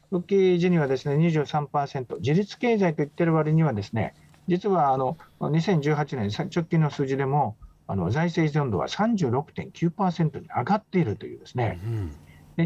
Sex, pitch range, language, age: male, 135-180 Hz, Japanese, 50-69